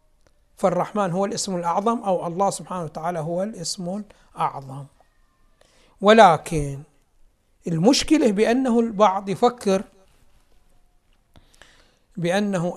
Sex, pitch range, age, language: male, 165-210 Hz, 60-79, Arabic